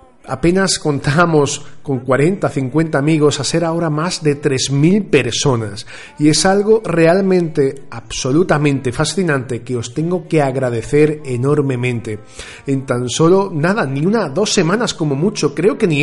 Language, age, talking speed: Spanish, 40-59, 140 wpm